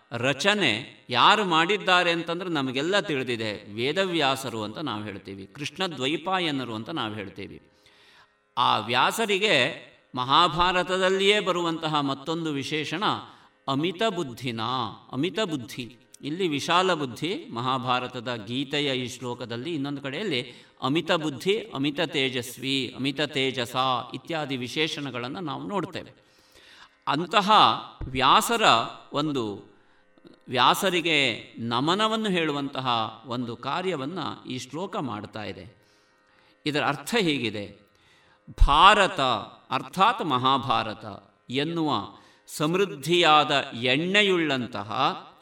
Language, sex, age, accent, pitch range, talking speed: Kannada, male, 50-69, native, 120-170 Hz, 80 wpm